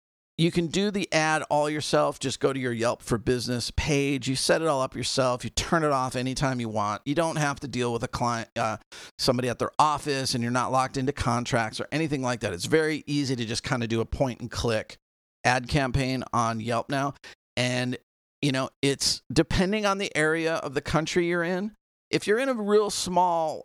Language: English